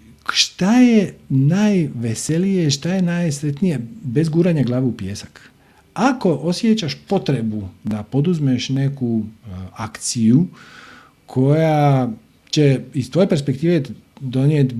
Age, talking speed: 50-69, 95 wpm